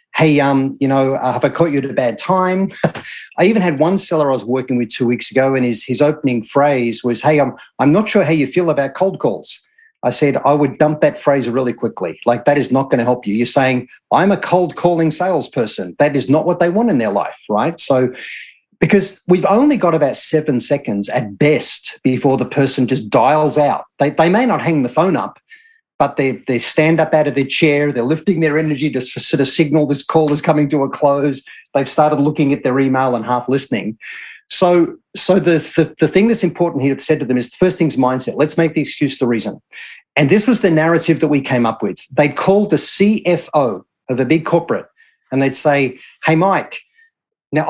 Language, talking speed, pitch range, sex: English, 225 wpm, 135-175 Hz, male